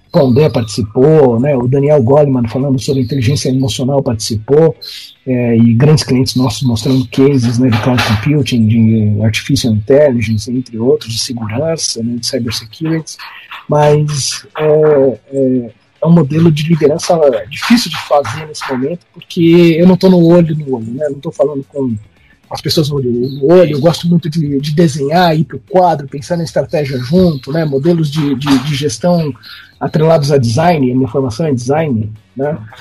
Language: Portuguese